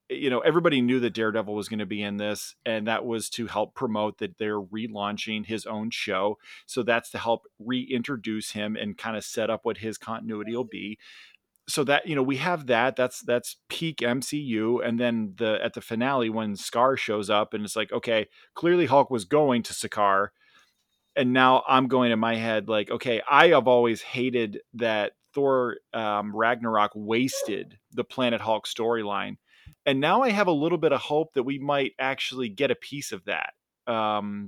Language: English